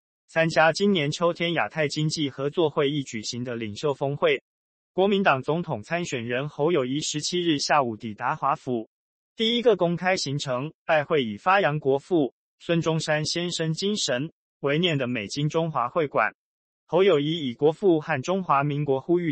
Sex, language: male, Chinese